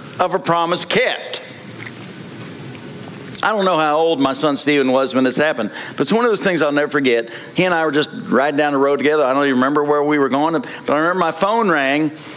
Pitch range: 120-155 Hz